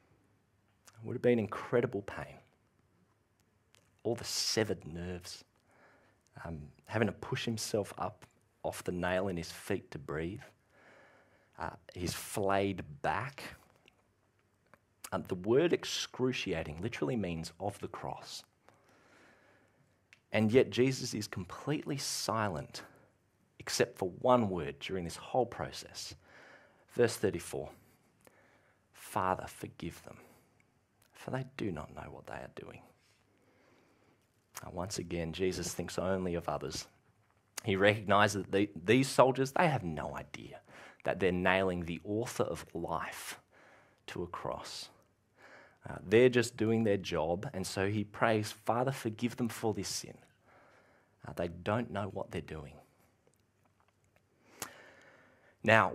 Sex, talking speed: male, 120 wpm